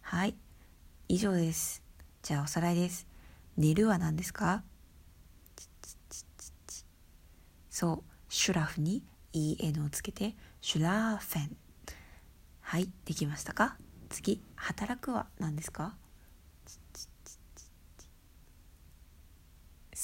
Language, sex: Japanese, female